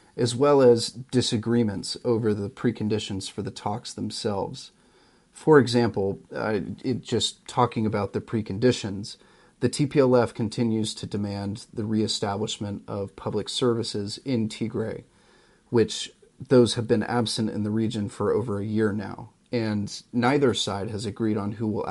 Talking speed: 140 wpm